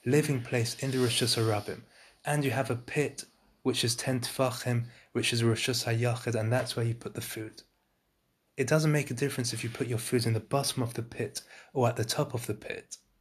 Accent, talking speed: British, 225 wpm